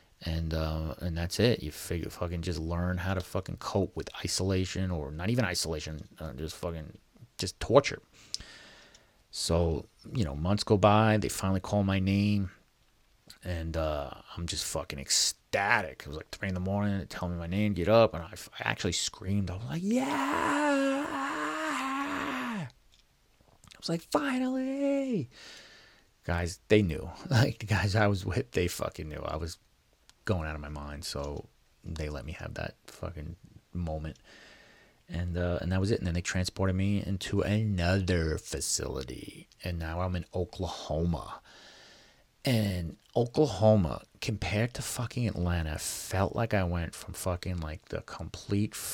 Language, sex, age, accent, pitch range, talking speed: English, male, 30-49, American, 85-105 Hz, 160 wpm